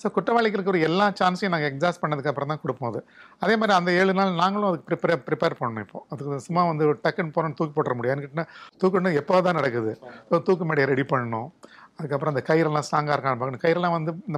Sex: male